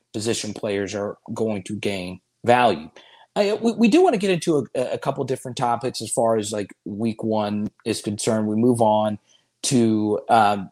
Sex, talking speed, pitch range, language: male, 185 wpm, 110-145 Hz, English